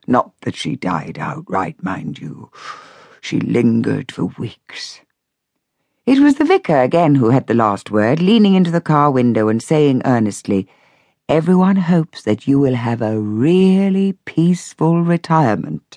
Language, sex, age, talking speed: English, female, 60-79, 145 wpm